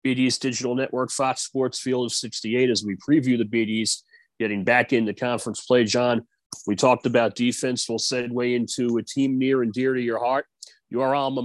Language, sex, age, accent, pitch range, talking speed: English, male, 30-49, American, 120-140 Hz, 190 wpm